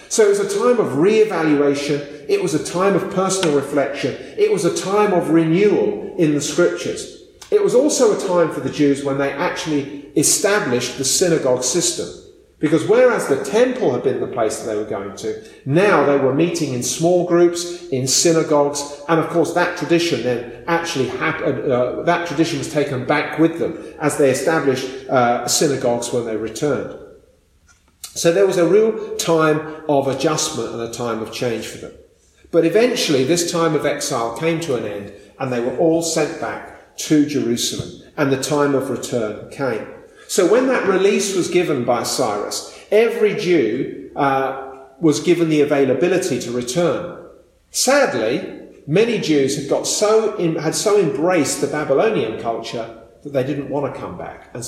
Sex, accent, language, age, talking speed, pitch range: male, British, English, 40-59, 175 wpm, 135-195 Hz